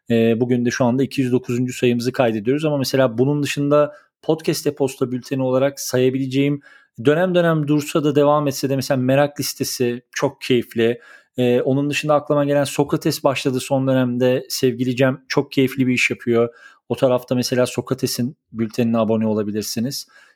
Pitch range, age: 130-160 Hz, 40-59